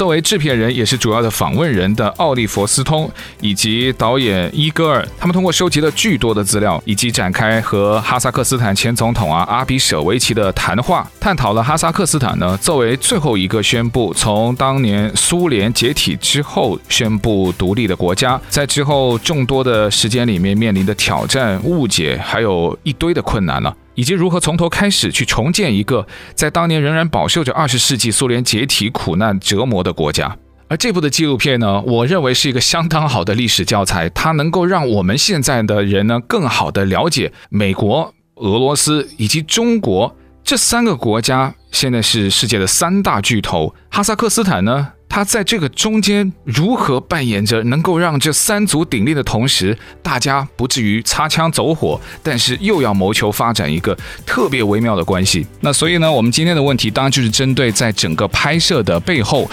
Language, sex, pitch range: Chinese, male, 105-155 Hz